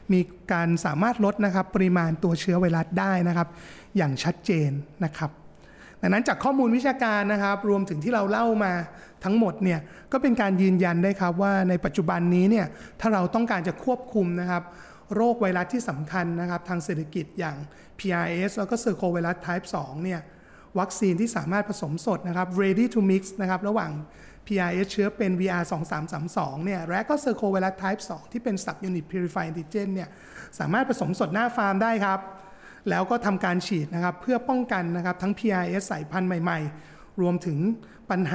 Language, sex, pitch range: Thai, male, 175-205 Hz